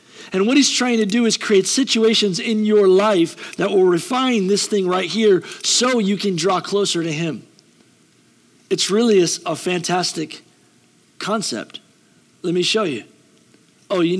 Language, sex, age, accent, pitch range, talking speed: English, male, 40-59, American, 190-280 Hz, 160 wpm